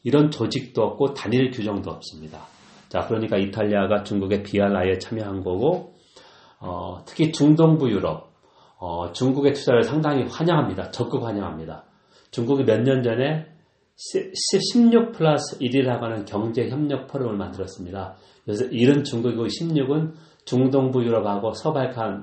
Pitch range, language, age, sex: 95-130 Hz, Korean, 40-59, male